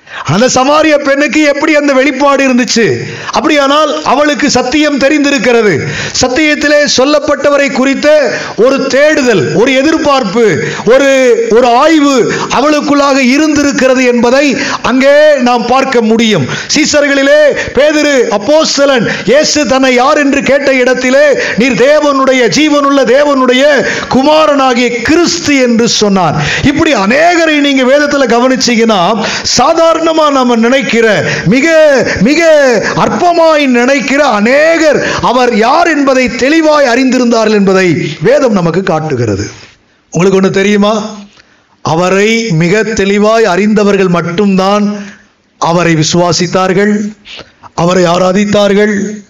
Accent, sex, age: native, male, 50-69